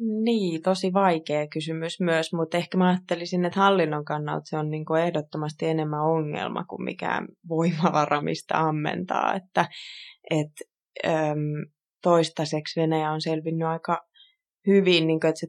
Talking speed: 140 wpm